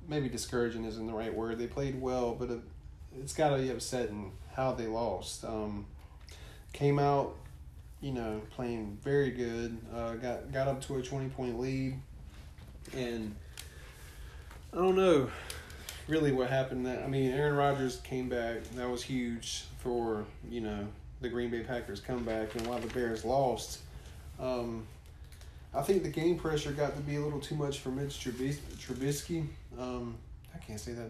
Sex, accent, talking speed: male, American, 165 wpm